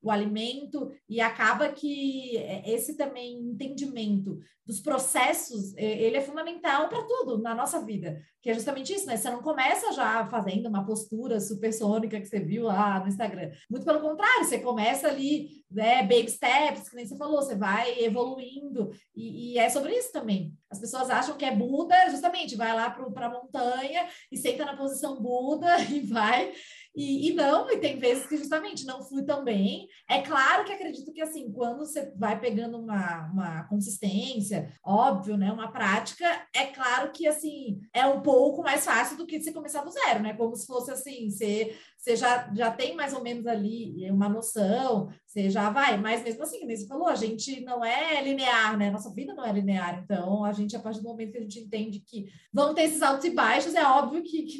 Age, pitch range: 20-39, 220-290 Hz